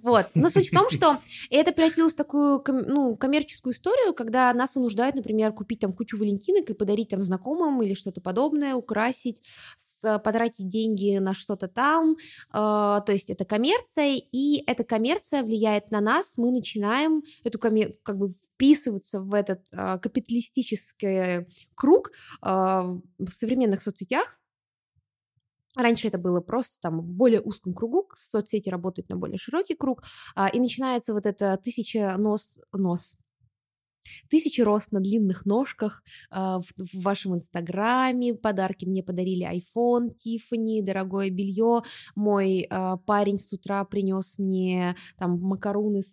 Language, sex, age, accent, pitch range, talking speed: Russian, female, 20-39, native, 190-245 Hz, 130 wpm